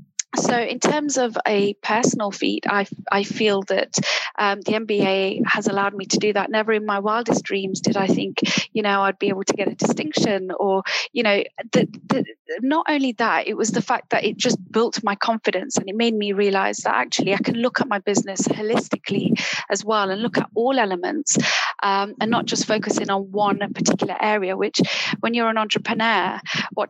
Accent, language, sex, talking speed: British, English, female, 205 wpm